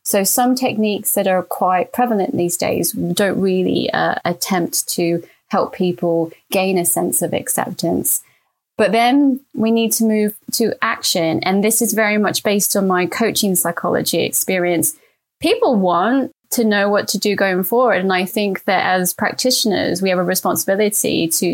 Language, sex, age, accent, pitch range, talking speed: English, female, 20-39, British, 180-225 Hz, 165 wpm